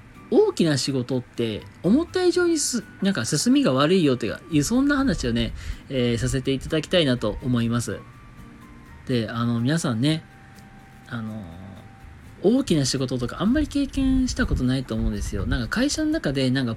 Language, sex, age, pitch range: Japanese, male, 40-59, 110-175 Hz